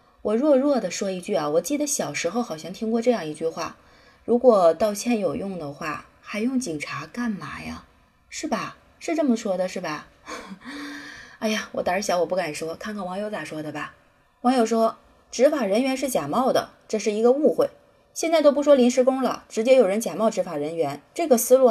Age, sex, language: 20-39, female, Chinese